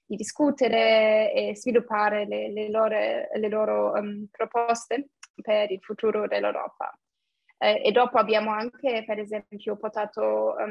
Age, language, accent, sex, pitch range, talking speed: 20-39, Italian, native, female, 210-230 Hz, 120 wpm